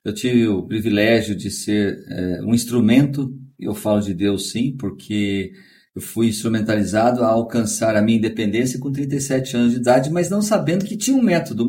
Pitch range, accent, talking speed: 115-165 Hz, Brazilian, 180 wpm